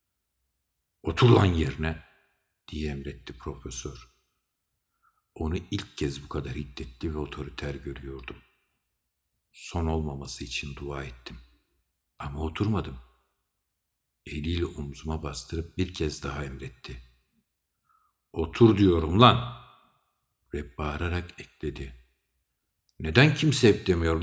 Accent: native